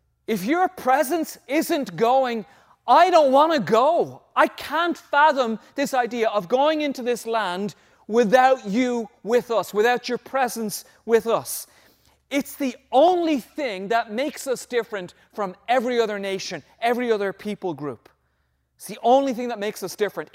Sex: male